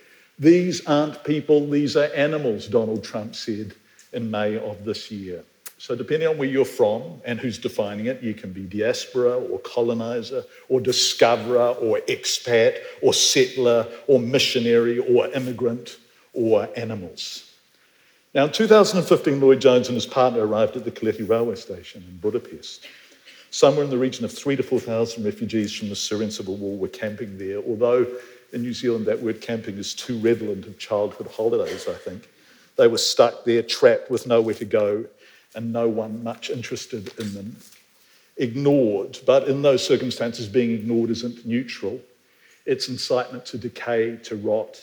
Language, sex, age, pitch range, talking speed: English, male, 50-69, 110-170 Hz, 165 wpm